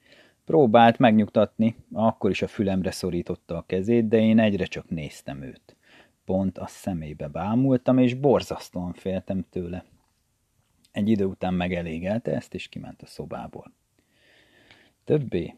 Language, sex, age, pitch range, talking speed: Hungarian, male, 30-49, 90-115 Hz, 125 wpm